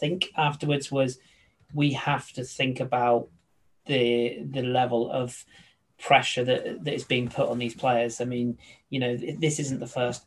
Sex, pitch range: male, 120-145 Hz